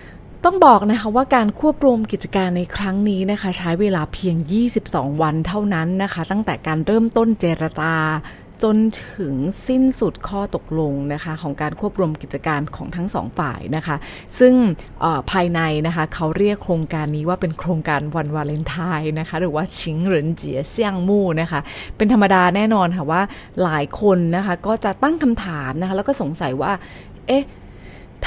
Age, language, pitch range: 20-39, English, 160-220 Hz